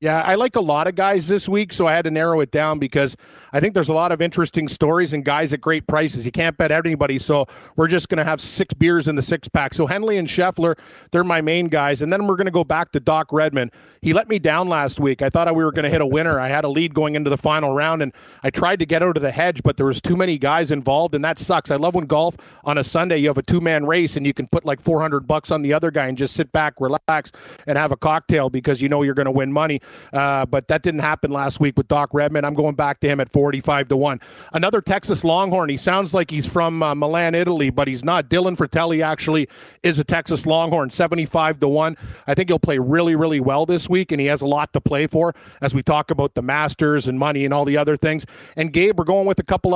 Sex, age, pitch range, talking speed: male, 40-59, 145-170 Hz, 275 wpm